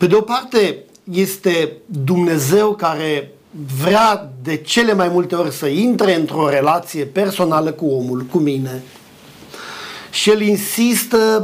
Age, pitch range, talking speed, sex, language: 50-69, 165-230 Hz, 130 wpm, male, Romanian